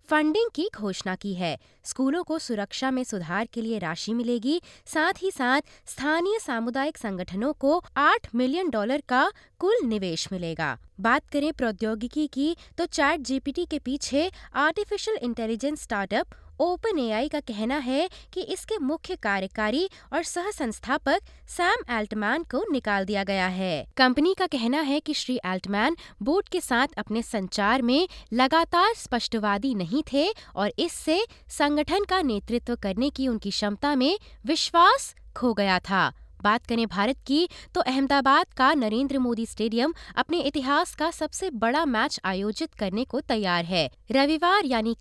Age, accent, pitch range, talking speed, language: 20-39, native, 220-320 Hz, 150 wpm, Hindi